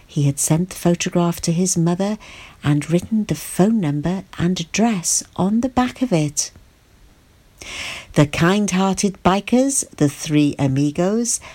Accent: British